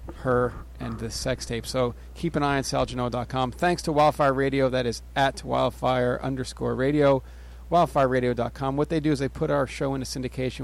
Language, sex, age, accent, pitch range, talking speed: English, male, 40-59, American, 120-150 Hz, 185 wpm